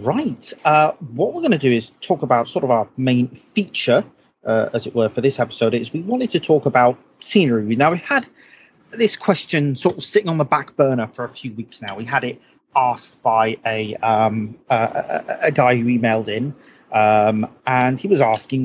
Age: 30-49